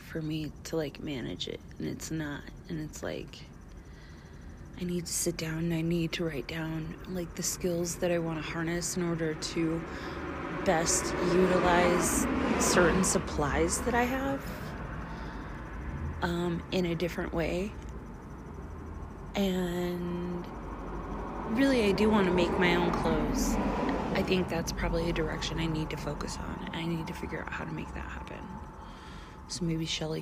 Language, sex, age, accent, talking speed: English, female, 30-49, American, 160 wpm